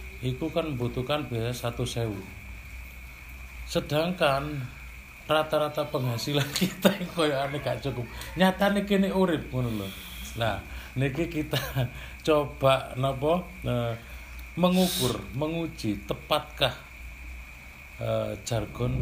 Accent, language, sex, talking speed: native, Indonesian, male, 80 wpm